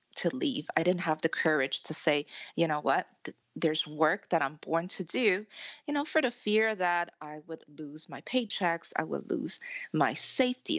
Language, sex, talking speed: English, female, 195 wpm